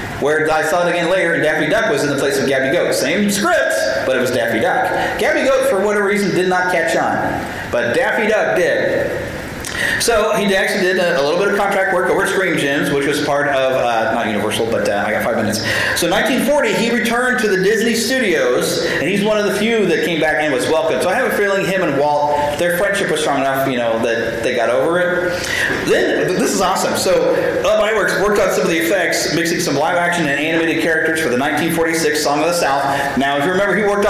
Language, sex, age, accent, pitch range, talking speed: English, male, 40-59, American, 150-210 Hz, 245 wpm